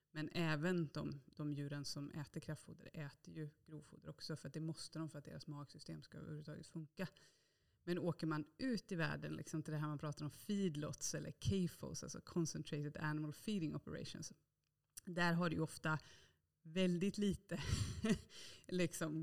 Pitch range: 150-170 Hz